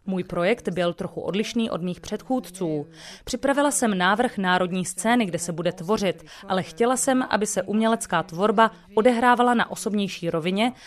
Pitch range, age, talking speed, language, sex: 175-220 Hz, 30-49, 155 wpm, Czech, female